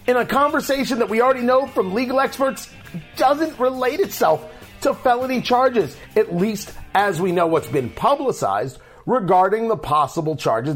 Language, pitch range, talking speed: English, 150-215 Hz, 155 wpm